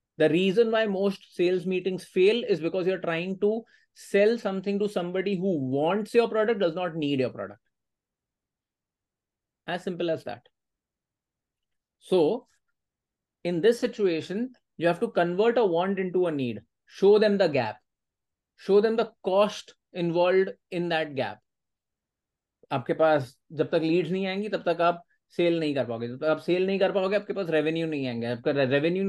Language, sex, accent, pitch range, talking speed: Hindi, male, native, 155-205 Hz, 160 wpm